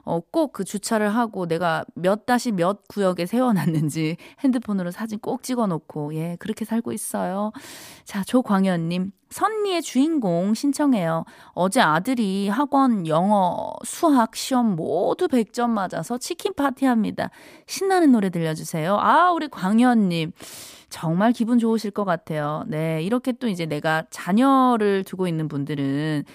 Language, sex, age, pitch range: Korean, female, 20-39, 180-270 Hz